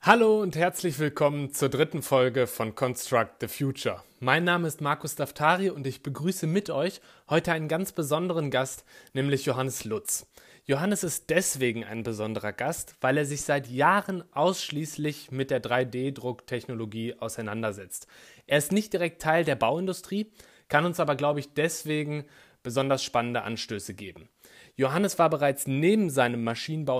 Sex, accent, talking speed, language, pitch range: male, German, 150 wpm, German, 125-165 Hz